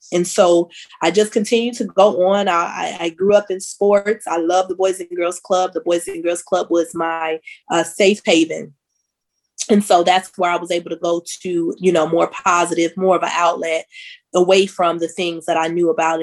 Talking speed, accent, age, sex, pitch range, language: 210 wpm, American, 20-39, female, 170-200 Hz, English